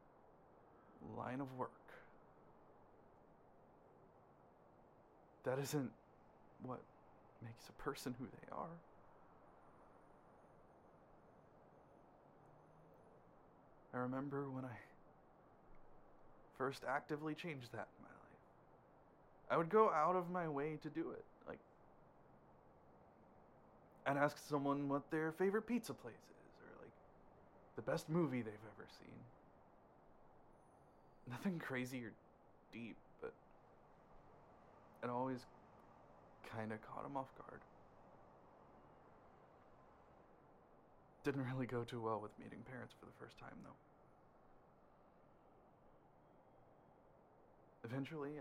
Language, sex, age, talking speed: English, male, 20-39, 95 wpm